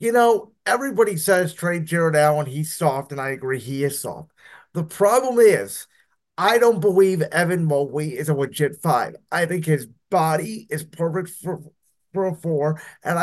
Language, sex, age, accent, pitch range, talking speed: English, male, 30-49, American, 155-200 Hz, 170 wpm